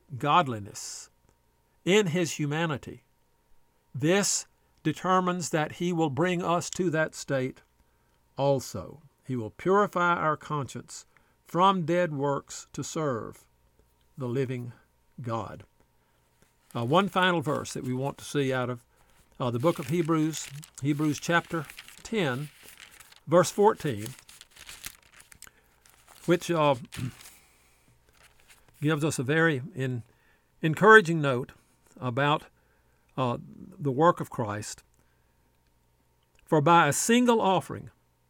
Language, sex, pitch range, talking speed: English, male, 125-175 Hz, 105 wpm